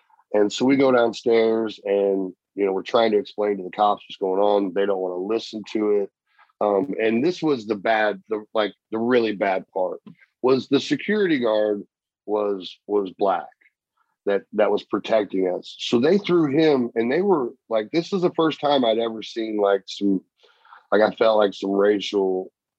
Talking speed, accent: 190 wpm, American